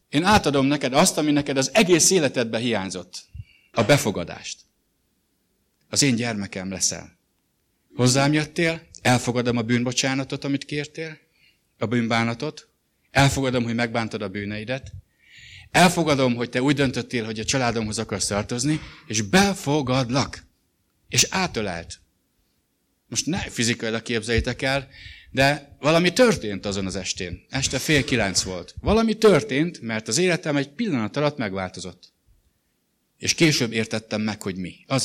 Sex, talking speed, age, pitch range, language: male, 130 wpm, 60-79, 105-150 Hz, English